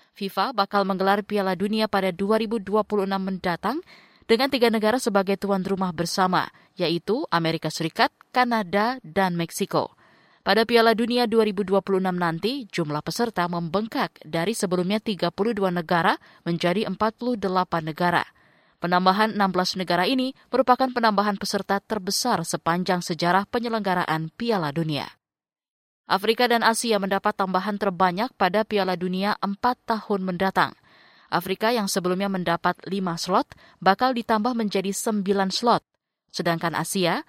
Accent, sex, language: native, female, Indonesian